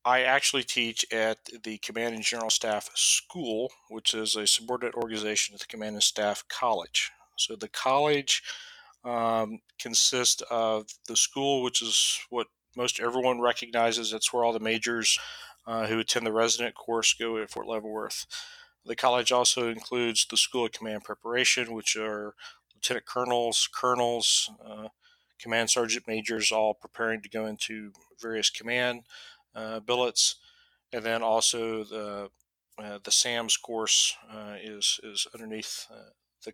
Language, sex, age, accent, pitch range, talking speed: English, male, 40-59, American, 110-125 Hz, 150 wpm